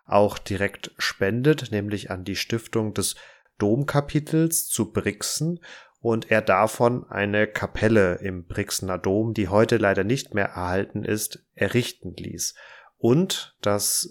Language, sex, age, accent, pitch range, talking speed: German, male, 30-49, German, 100-120 Hz, 130 wpm